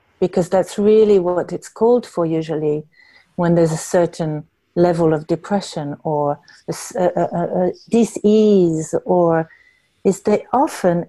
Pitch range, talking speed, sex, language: 155-195 Hz, 135 wpm, female, English